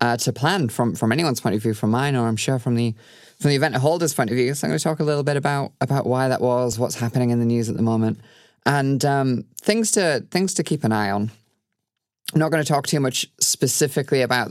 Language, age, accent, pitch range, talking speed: English, 20-39, British, 115-140 Hz, 260 wpm